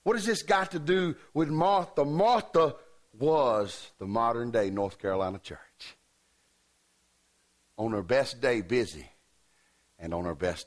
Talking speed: 135 wpm